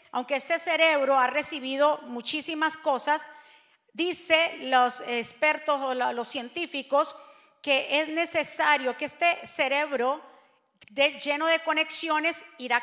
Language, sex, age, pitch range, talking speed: Spanish, female, 40-59, 270-345 Hz, 110 wpm